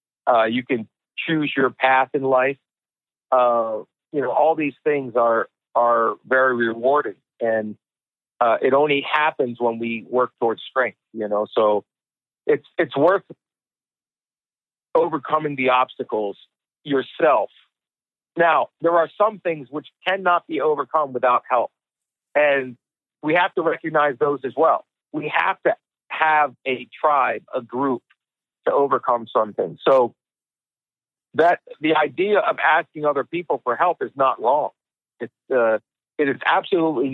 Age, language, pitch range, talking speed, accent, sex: 50-69, English, 125-155 Hz, 140 wpm, American, male